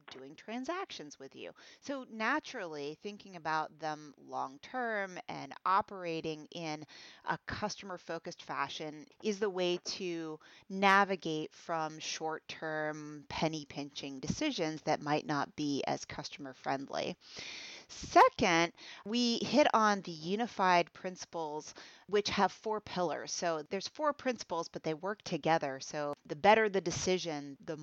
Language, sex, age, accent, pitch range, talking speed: English, female, 30-49, American, 150-200 Hz, 130 wpm